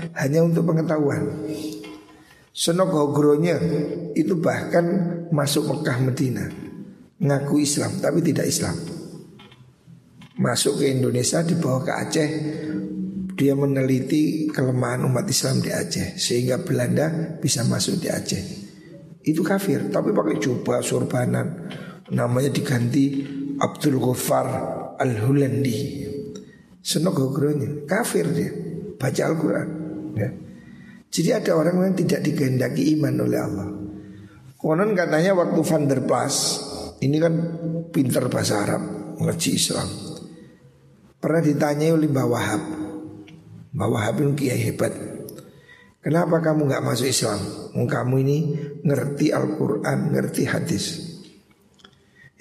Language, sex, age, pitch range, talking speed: Indonesian, male, 50-69, 135-165 Hz, 105 wpm